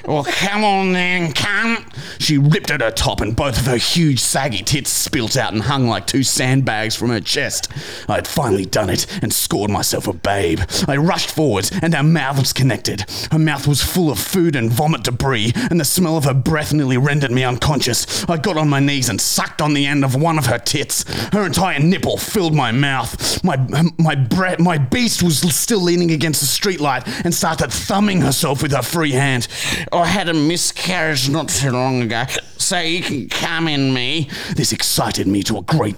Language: English